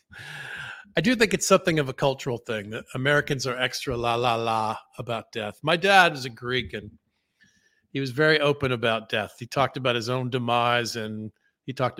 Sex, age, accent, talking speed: male, 50-69, American, 195 wpm